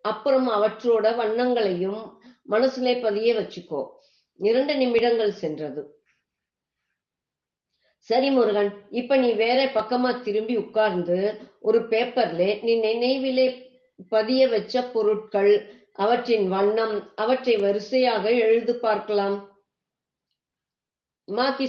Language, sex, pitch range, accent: Tamil, female, 200-240 Hz, native